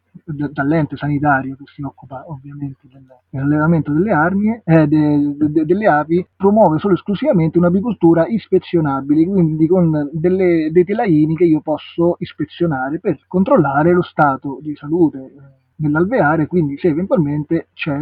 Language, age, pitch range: Italian, 30-49, 140-175 Hz